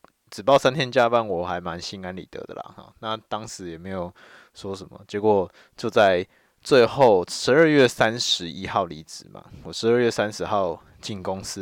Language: Chinese